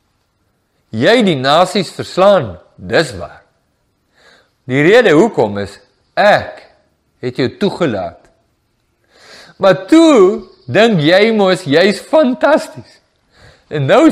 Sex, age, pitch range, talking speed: male, 50-69, 115-185 Hz, 100 wpm